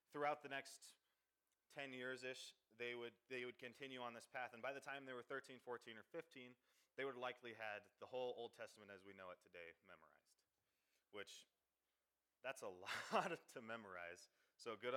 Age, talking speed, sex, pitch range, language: 30-49, 180 wpm, male, 110-130 Hz, English